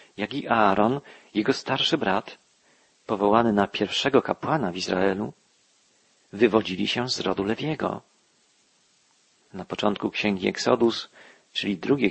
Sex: male